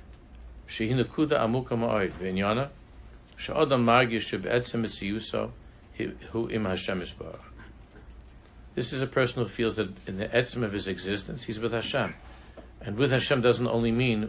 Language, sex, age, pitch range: English, male, 60-79, 90-115 Hz